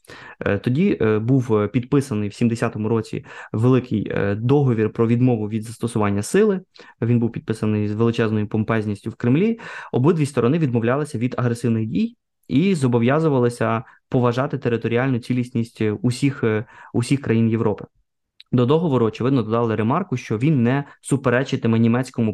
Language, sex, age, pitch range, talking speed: Ukrainian, male, 20-39, 110-135 Hz, 125 wpm